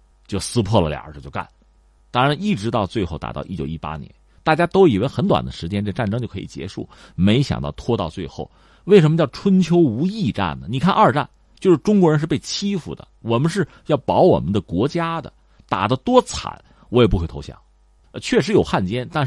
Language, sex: Chinese, male